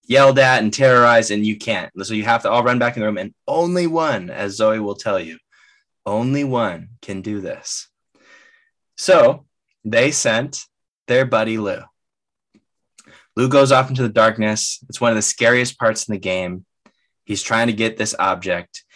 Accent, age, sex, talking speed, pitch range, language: American, 20-39, male, 180 wpm, 110-155 Hz, English